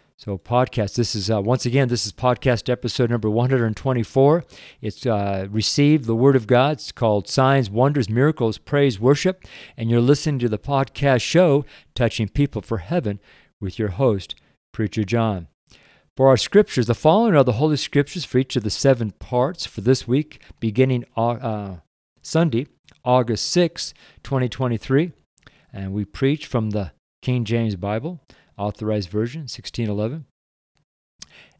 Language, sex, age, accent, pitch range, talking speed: English, male, 50-69, American, 105-135 Hz, 150 wpm